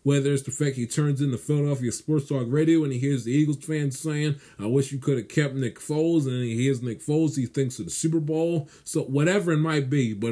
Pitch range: 120-150 Hz